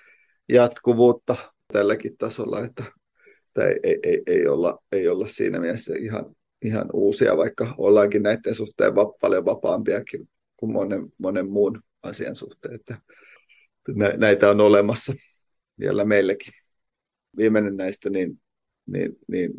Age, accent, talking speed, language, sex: 30-49, native, 125 wpm, Finnish, male